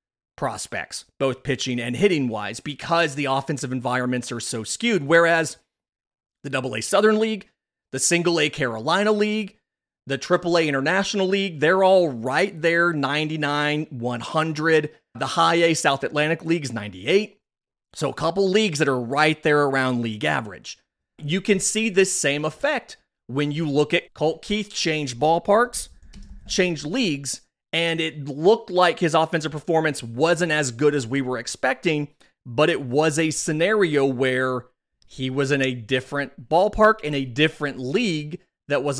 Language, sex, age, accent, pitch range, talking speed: English, male, 30-49, American, 135-175 Hz, 150 wpm